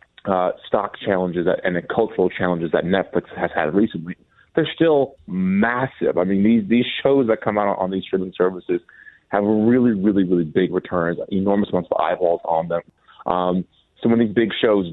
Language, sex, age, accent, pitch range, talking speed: English, male, 30-49, American, 90-115 Hz, 180 wpm